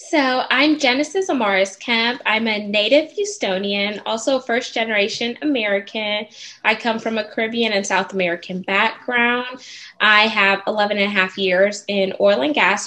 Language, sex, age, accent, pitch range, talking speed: English, female, 10-29, American, 190-225 Hz, 155 wpm